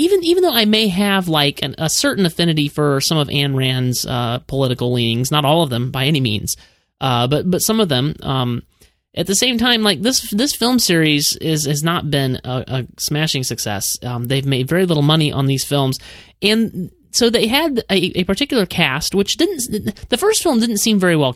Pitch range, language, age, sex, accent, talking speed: 135-195 Hz, English, 30-49, male, American, 215 wpm